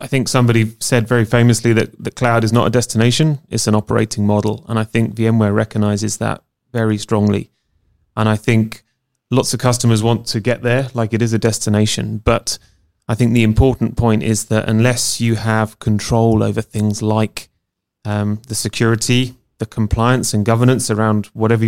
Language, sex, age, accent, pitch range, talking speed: Dutch, male, 30-49, British, 110-120 Hz, 175 wpm